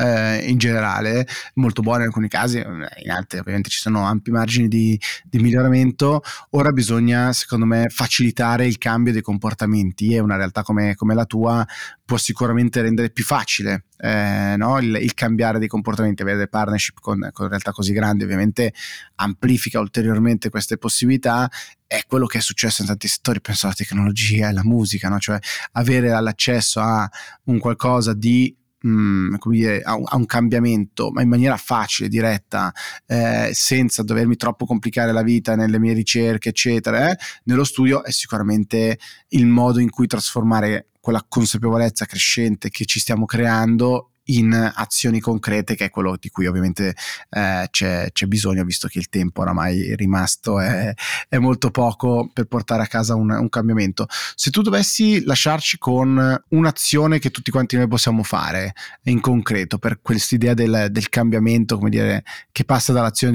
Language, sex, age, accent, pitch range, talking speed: Italian, male, 20-39, native, 105-120 Hz, 165 wpm